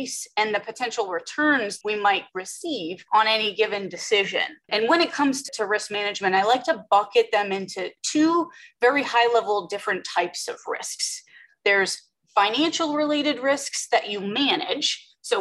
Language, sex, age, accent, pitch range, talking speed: English, female, 20-39, American, 200-300 Hz, 150 wpm